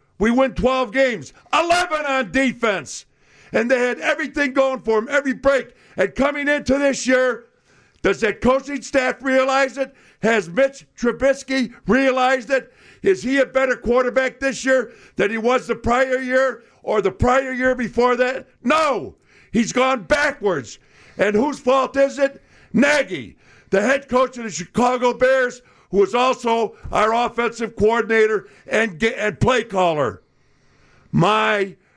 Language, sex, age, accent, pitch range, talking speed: English, male, 50-69, American, 180-260 Hz, 150 wpm